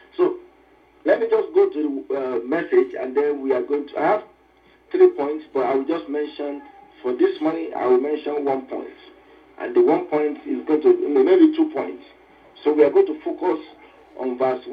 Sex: male